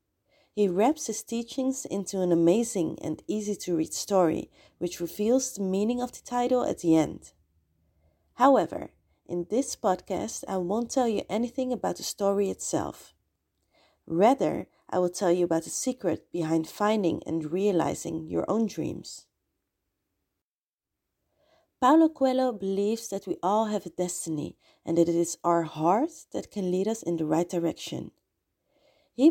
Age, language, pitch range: 30-49, English, 170-225 Hz